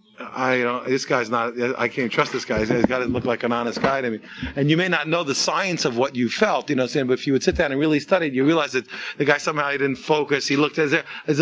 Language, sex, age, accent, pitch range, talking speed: English, male, 30-49, American, 135-185 Hz, 310 wpm